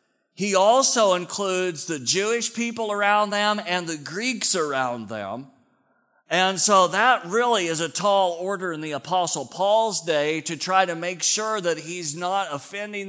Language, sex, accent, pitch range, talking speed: English, male, American, 155-195 Hz, 160 wpm